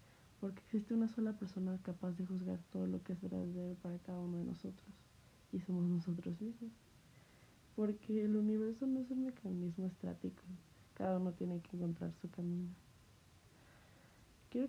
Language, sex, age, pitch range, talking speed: Spanish, female, 20-39, 175-200 Hz, 155 wpm